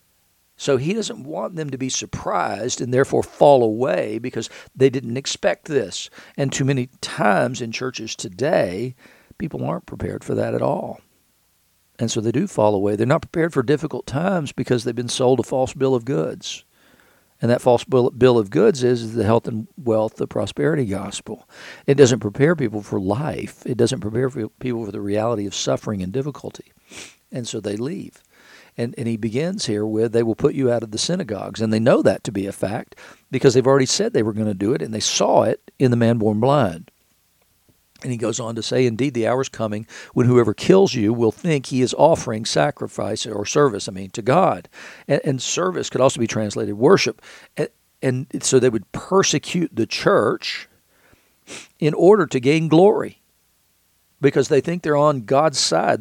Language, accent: English, American